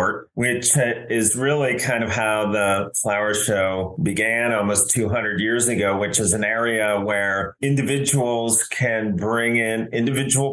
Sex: male